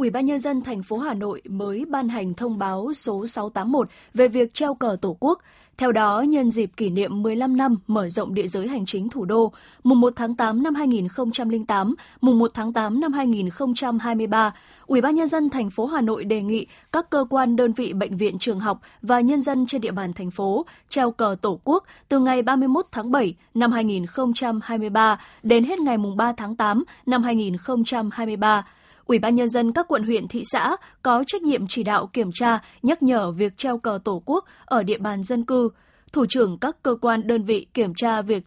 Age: 20-39